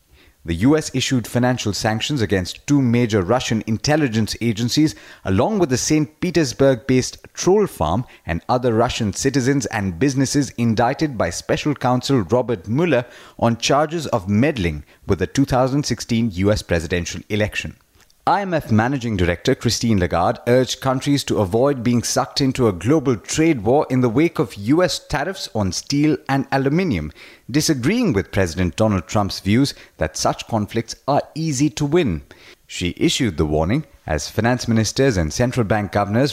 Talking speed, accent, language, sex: 150 wpm, Indian, English, male